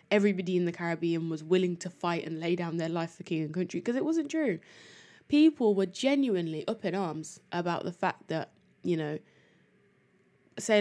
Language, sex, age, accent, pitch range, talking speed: English, female, 20-39, British, 170-195 Hz, 190 wpm